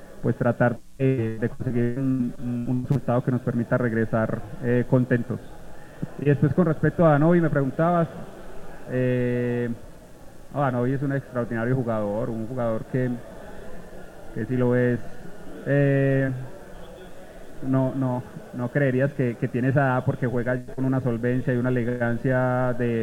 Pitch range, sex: 120-140 Hz, male